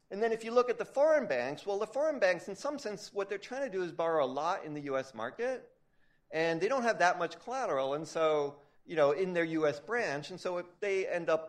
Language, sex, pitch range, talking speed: English, male, 135-195 Hz, 260 wpm